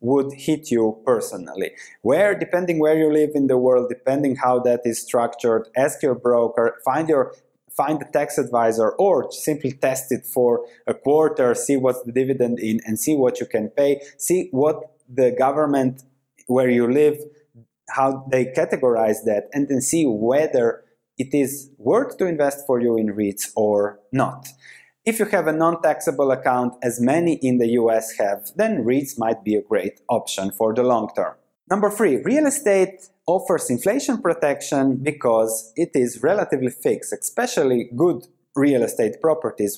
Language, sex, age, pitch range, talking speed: English, male, 20-39, 125-160 Hz, 165 wpm